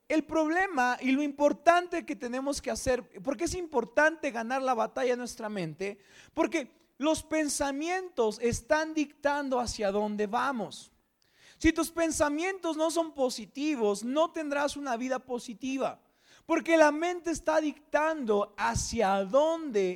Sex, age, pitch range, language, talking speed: male, 40-59, 230-315 Hz, Spanish, 130 wpm